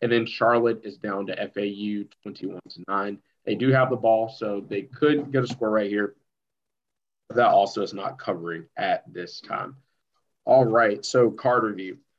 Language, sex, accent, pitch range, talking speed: English, male, American, 105-125 Hz, 175 wpm